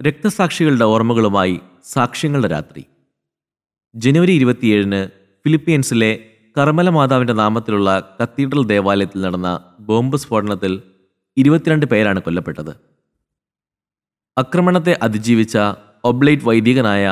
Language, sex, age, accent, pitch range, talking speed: English, male, 30-49, Indian, 110-140 Hz, 90 wpm